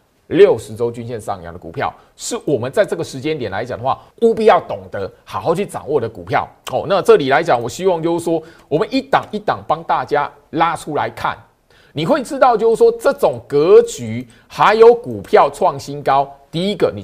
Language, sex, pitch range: Chinese, male, 140-235 Hz